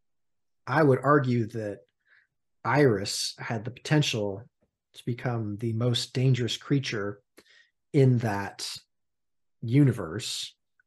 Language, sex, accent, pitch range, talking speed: English, male, American, 110-130 Hz, 95 wpm